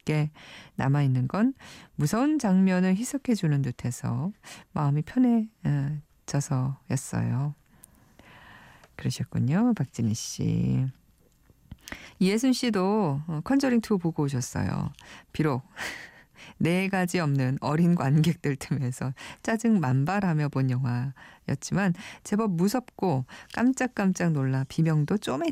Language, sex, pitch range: Korean, female, 135-190 Hz